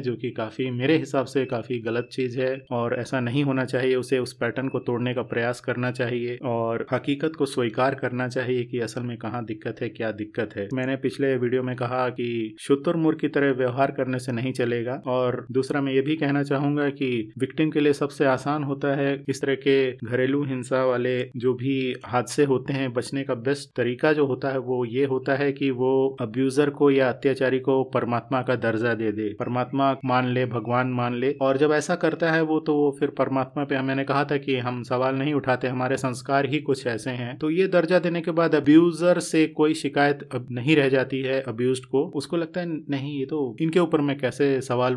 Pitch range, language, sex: 125-140 Hz, Hindi, male